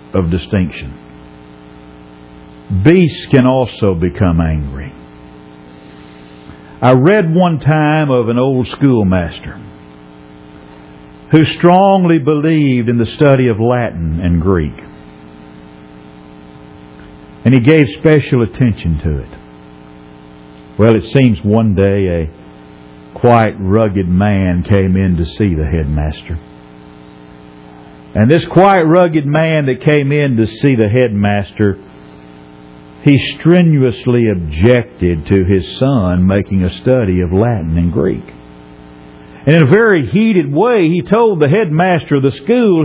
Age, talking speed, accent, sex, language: 50-69, 120 wpm, American, male, English